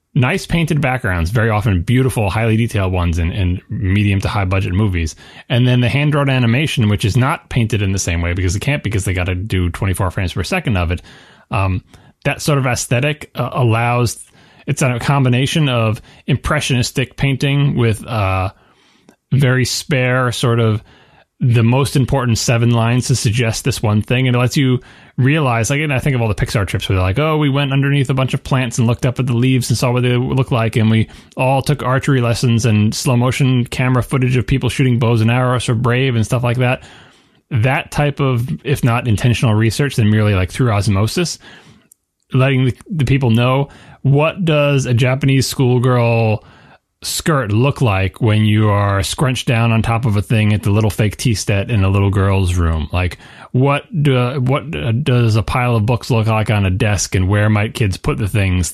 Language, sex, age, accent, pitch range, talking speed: English, male, 30-49, American, 105-135 Hz, 205 wpm